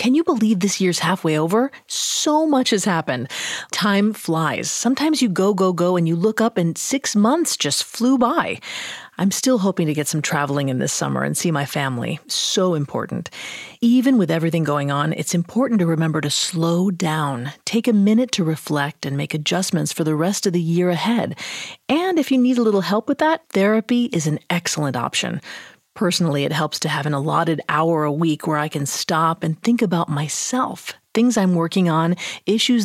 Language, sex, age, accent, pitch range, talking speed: English, female, 30-49, American, 160-220 Hz, 195 wpm